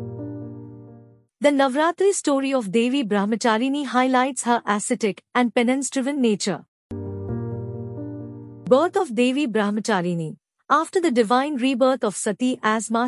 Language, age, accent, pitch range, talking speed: English, 50-69, Indian, 190-285 Hz, 105 wpm